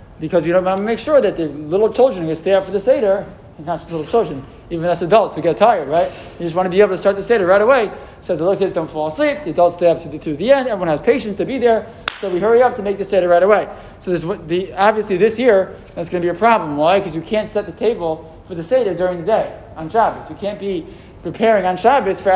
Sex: male